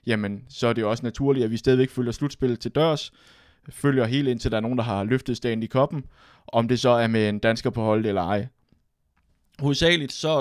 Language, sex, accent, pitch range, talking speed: Danish, male, native, 110-130 Hz, 220 wpm